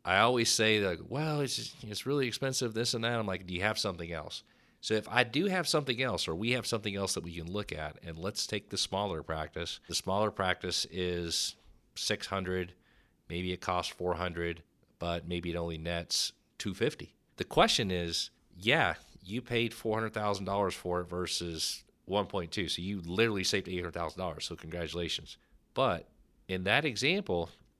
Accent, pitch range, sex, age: American, 90-115 Hz, male, 40-59